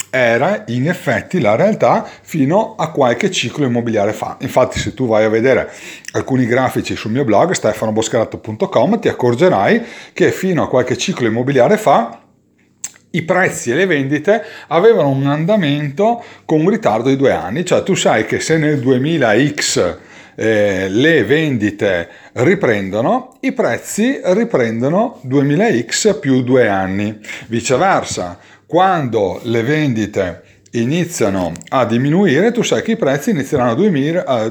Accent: native